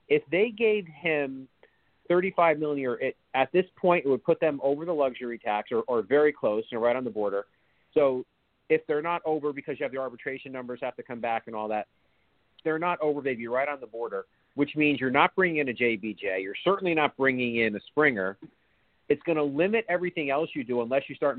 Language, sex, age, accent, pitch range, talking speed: English, male, 40-59, American, 130-180 Hz, 225 wpm